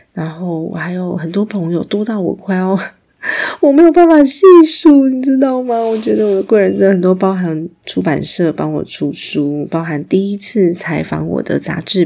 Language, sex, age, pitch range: Chinese, female, 30-49, 160-200 Hz